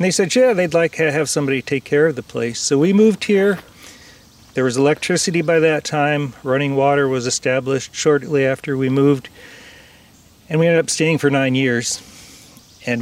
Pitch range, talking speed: 125-160 Hz, 190 wpm